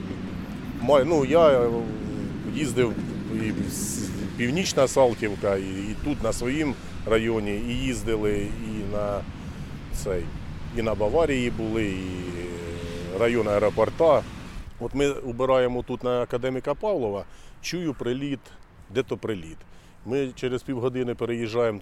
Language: Ukrainian